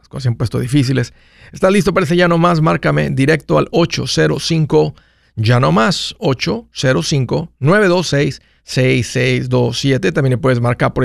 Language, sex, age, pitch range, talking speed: Spanish, male, 50-69, 130-170 Hz, 115 wpm